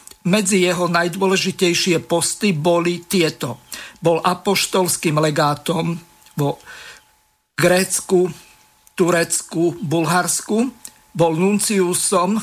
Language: Slovak